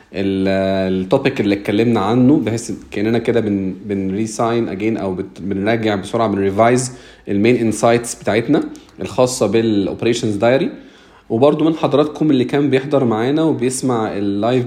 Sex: male